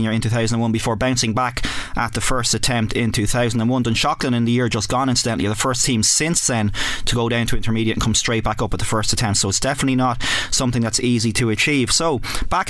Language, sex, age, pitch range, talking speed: English, male, 20-39, 110-130 Hz, 225 wpm